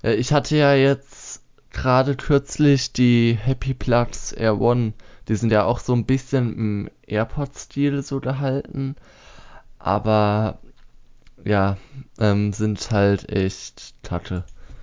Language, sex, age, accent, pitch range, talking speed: German, male, 20-39, German, 95-120 Hz, 120 wpm